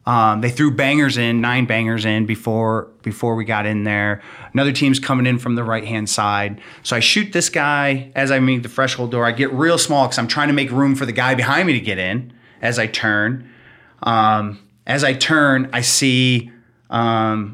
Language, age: English, 30-49